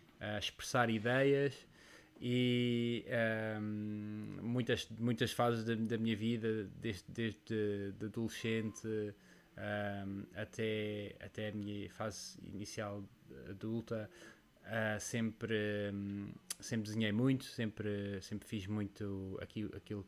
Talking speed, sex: 95 wpm, male